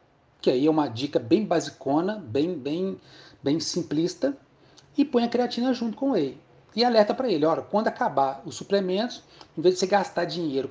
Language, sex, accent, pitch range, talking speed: Portuguese, male, Brazilian, 125-175 Hz, 185 wpm